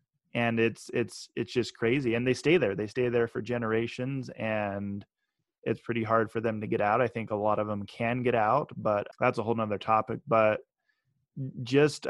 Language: English